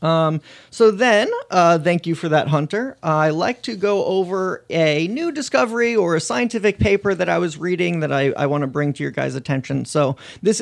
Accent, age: American, 30-49